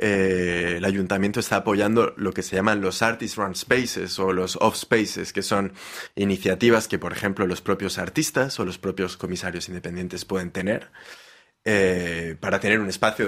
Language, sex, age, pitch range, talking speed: Spanish, male, 20-39, 95-115 Hz, 170 wpm